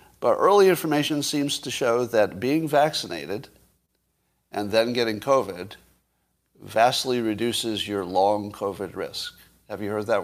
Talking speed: 135 wpm